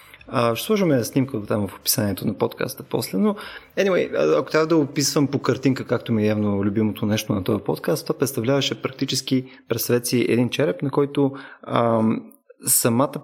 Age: 20-39